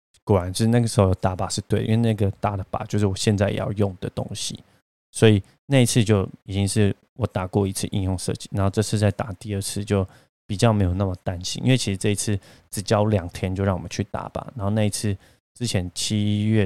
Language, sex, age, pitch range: Chinese, male, 20-39, 95-110 Hz